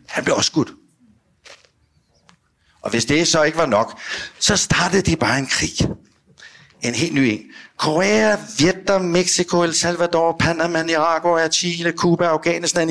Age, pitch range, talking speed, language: 60-79, 105-160 Hz, 145 wpm, Danish